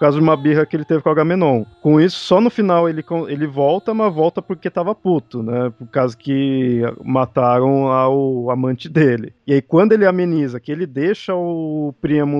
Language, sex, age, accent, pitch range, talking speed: Portuguese, male, 20-39, Brazilian, 125-155 Hz, 200 wpm